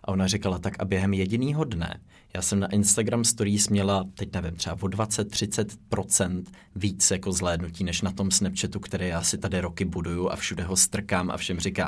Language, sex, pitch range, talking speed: Czech, male, 95-110 Hz, 195 wpm